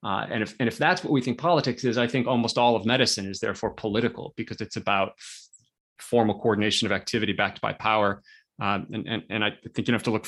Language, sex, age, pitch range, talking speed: English, male, 30-49, 110-135 Hz, 235 wpm